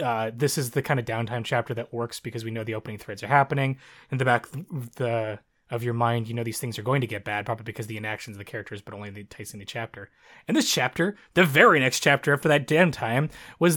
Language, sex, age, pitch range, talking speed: English, male, 20-39, 115-150 Hz, 265 wpm